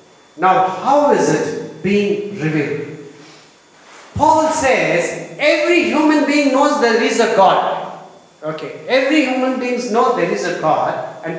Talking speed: 135 wpm